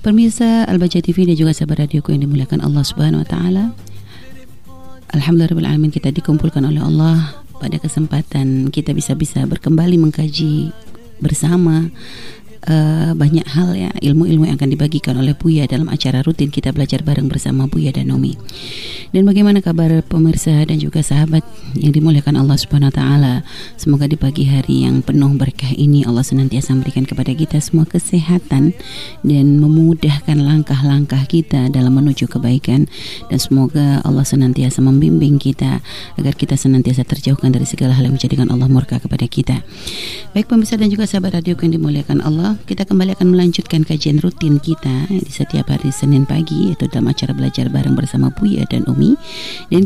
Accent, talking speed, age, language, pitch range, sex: native, 160 wpm, 30-49, Indonesian, 130-165 Hz, female